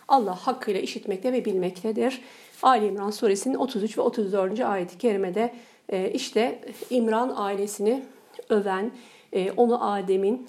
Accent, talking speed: native, 110 wpm